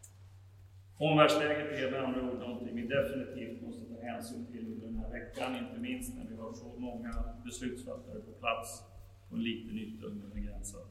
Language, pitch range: Swedish, 95-130 Hz